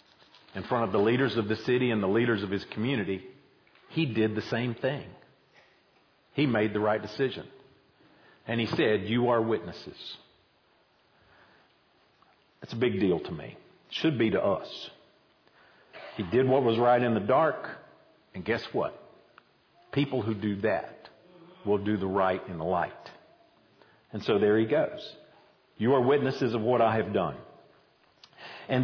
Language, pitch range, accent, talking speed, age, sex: English, 115-170 Hz, American, 160 wpm, 50-69, male